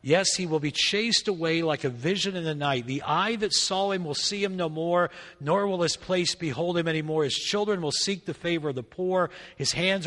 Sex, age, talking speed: male, 50-69, 245 wpm